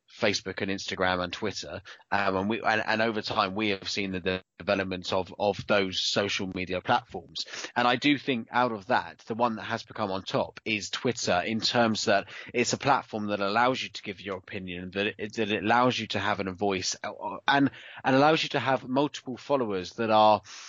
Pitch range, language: 100-135 Hz, English